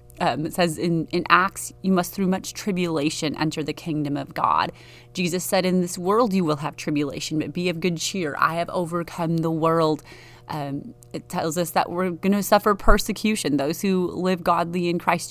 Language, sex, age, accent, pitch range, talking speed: English, female, 30-49, American, 155-190 Hz, 200 wpm